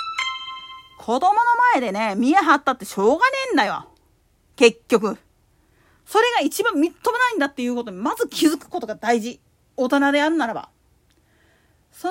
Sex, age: female, 40-59